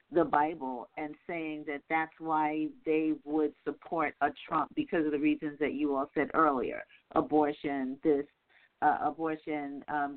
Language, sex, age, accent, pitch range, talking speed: English, female, 50-69, American, 145-175 Hz, 155 wpm